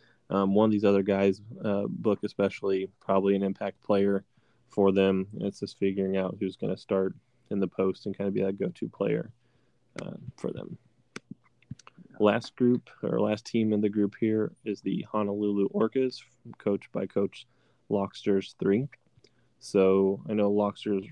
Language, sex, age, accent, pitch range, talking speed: English, male, 20-39, American, 100-110 Hz, 170 wpm